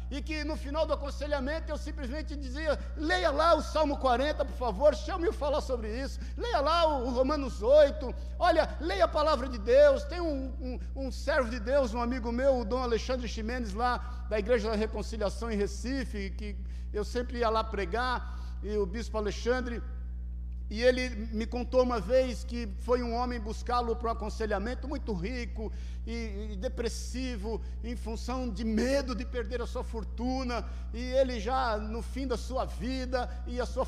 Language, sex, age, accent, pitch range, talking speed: Portuguese, male, 60-79, Brazilian, 215-260 Hz, 175 wpm